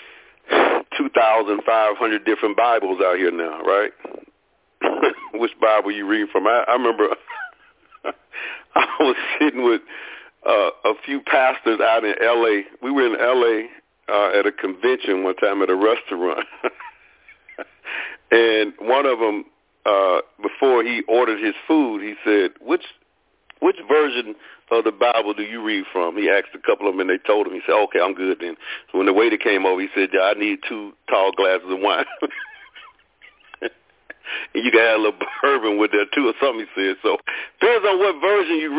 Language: English